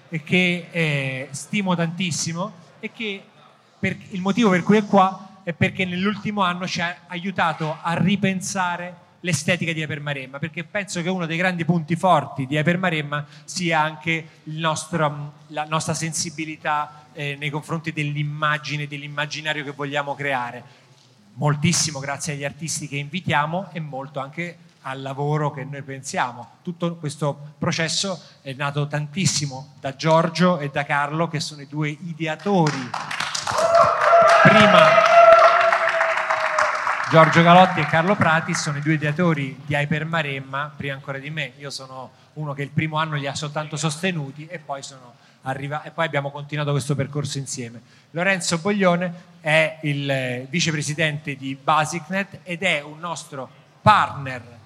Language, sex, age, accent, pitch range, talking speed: Italian, male, 30-49, native, 145-175 Hz, 145 wpm